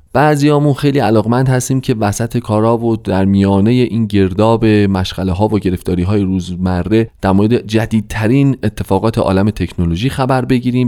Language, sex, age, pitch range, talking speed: Persian, male, 30-49, 100-145 Hz, 145 wpm